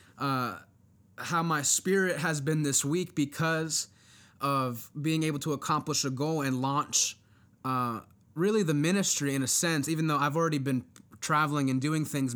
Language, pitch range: English, 130-155 Hz